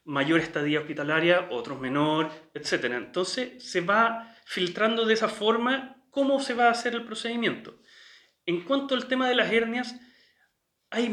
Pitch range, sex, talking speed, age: 170-230 Hz, male, 150 wpm, 30-49